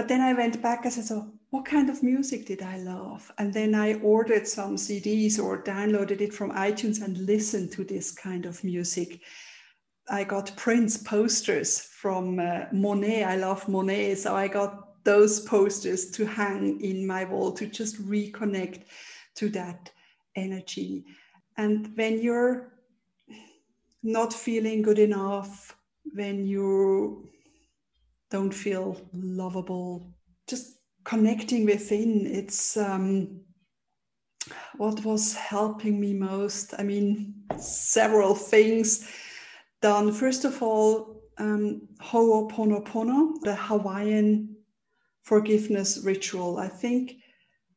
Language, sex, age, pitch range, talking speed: English, female, 50-69, 195-220 Hz, 120 wpm